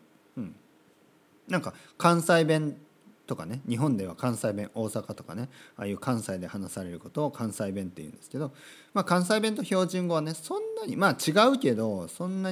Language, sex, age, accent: Japanese, male, 40-59, native